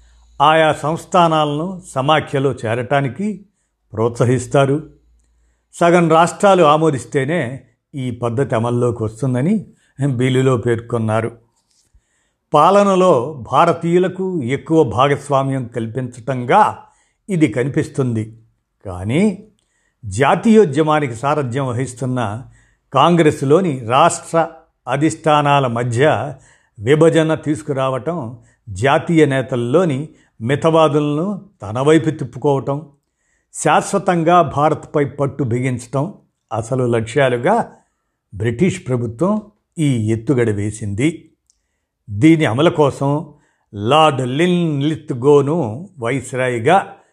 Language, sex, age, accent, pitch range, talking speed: Telugu, male, 50-69, native, 120-160 Hz, 65 wpm